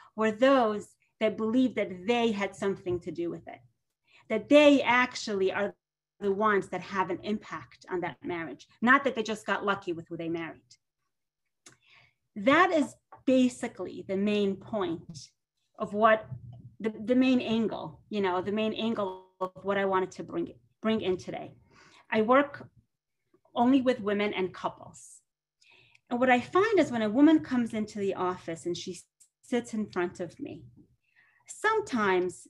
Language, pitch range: English, 185-255 Hz